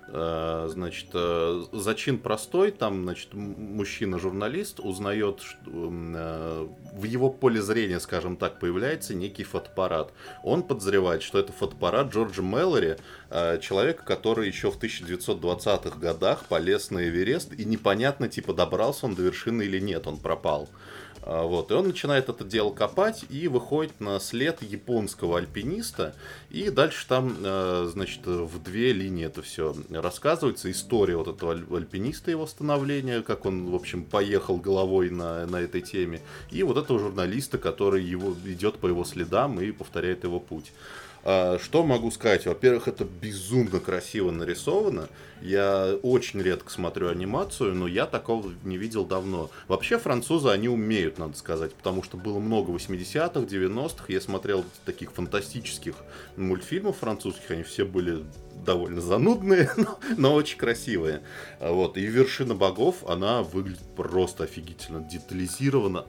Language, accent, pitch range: Russian, native, 90-120 Hz